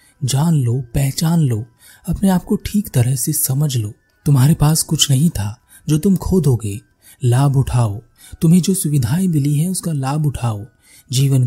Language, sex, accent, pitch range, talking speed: Hindi, male, native, 120-150 Hz, 165 wpm